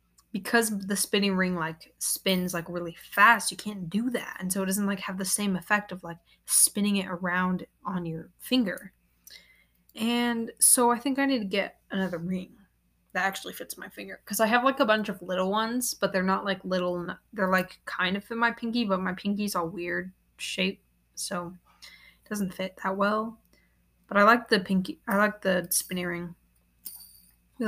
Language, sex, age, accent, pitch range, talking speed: English, female, 20-39, American, 180-215 Hz, 195 wpm